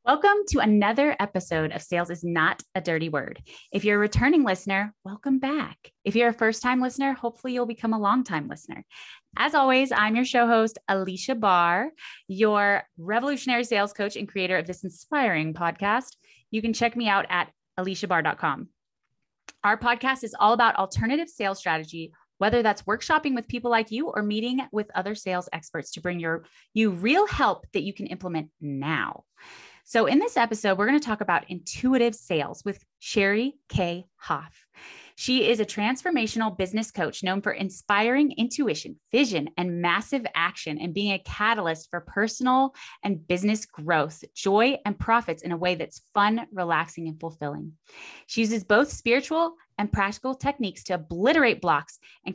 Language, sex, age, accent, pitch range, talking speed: English, female, 20-39, American, 180-240 Hz, 170 wpm